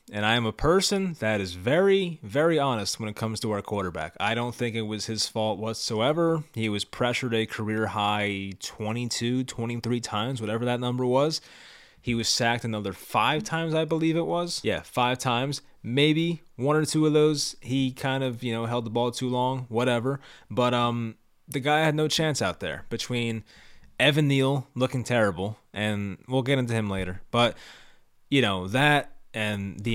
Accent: American